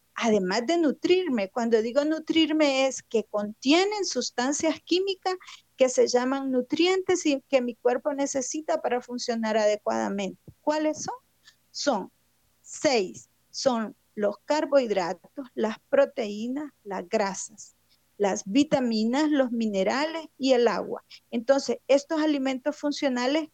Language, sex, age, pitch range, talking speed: Spanish, female, 40-59, 225-290 Hz, 115 wpm